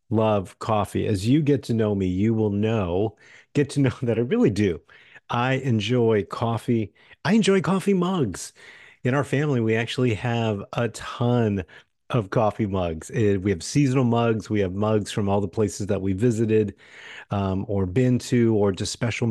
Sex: male